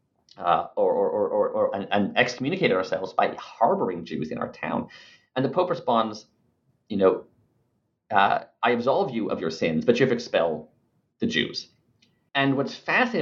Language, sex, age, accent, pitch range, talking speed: English, male, 30-49, American, 115-180 Hz, 175 wpm